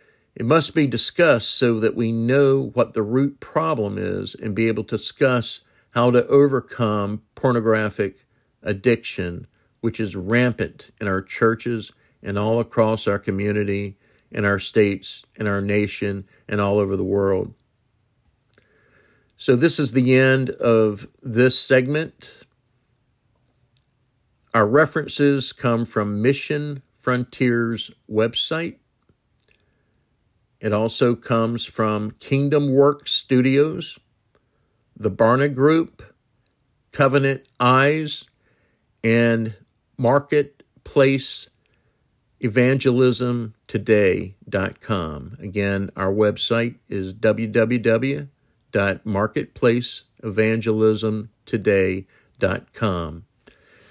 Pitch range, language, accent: 110-130 Hz, English, American